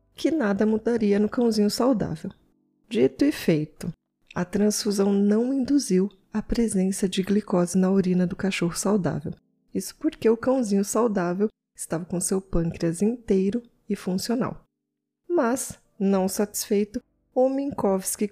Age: 20-39